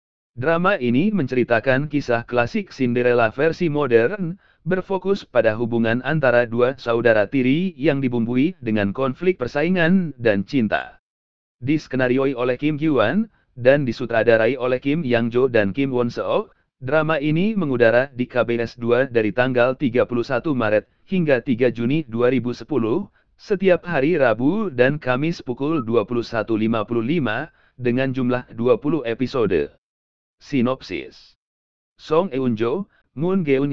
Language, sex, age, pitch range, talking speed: Indonesian, male, 40-59, 120-155 Hz, 120 wpm